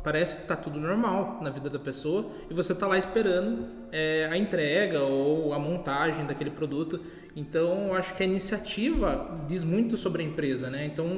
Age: 20-39